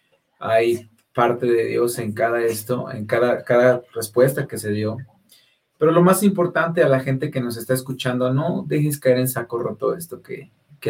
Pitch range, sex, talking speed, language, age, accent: 115-135 Hz, male, 185 wpm, Spanish, 30-49, Mexican